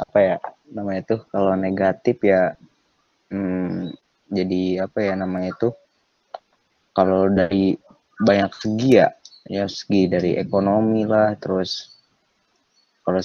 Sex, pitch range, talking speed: male, 95-110 Hz, 115 wpm